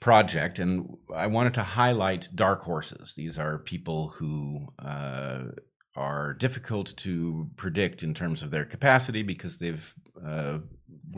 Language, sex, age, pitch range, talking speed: English, male, 40-59, 80-100 Hz, 135 wpm